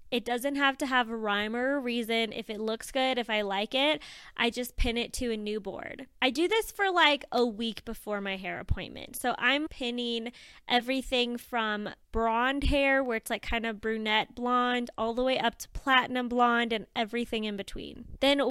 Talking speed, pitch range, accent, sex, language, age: 205 wpm, 225-275 Hz, American, female, English, 20-39